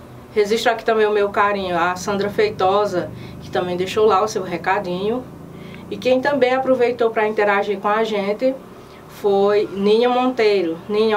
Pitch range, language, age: 200-245 Hz, Portuguese, 20-39